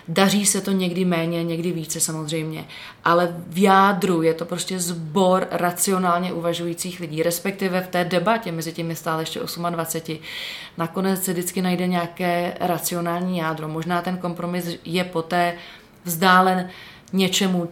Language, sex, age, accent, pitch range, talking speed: Czech, female, 30-49, native, 170-185 Hz, 140 wpm